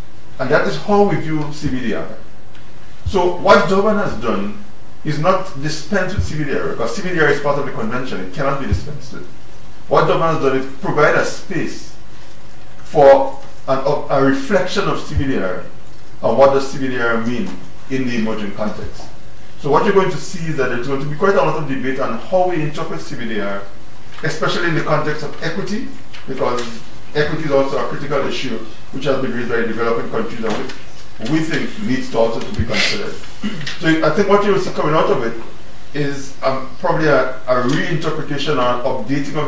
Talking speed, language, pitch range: 185 wpm, English, 125-165 Hz